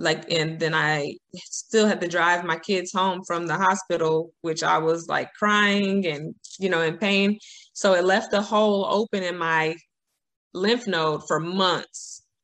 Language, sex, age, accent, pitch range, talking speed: English, female, 20-39, American, 165-195 Hz, 175 wpm